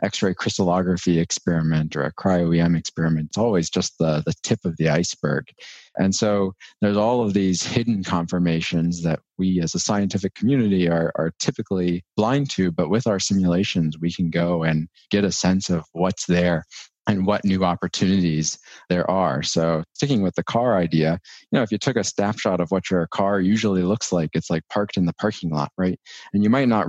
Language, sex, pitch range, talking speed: English, male, 85-100 Hz, 195 wpm